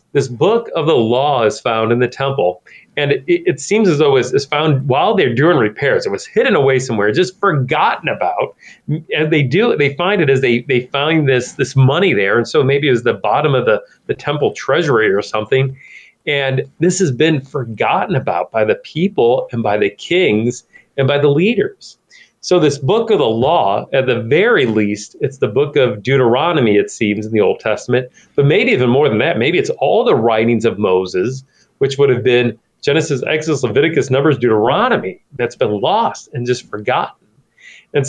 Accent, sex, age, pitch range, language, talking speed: American, male, 40-59, 120-175 Hz, English, 200 wpm